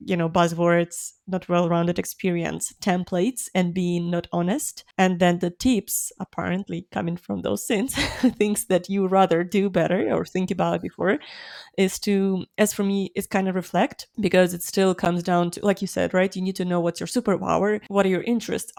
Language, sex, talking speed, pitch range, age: English, female, 190 wpm, 175-200 Hz, 20-39